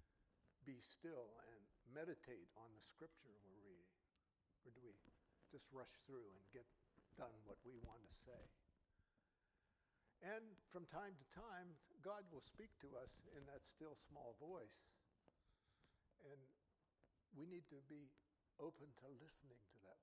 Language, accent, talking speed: English, American, 145 wpm